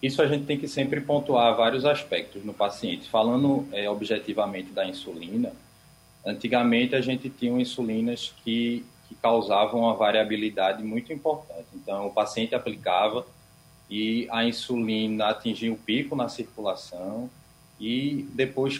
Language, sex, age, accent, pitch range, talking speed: Portuguese, male, 20-39, Brazilian, 105-130 Hz, 130 wpm